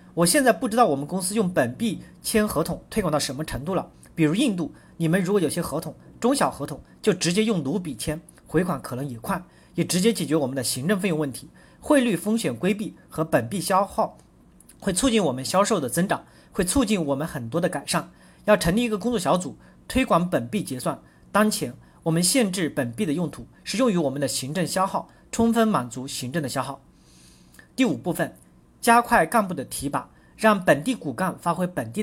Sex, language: male, Chinese